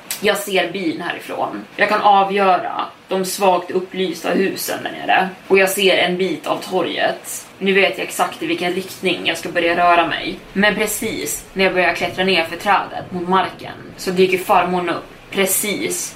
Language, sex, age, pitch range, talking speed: Swedish, female, 20-39, 175-200 Hz, 180 wpm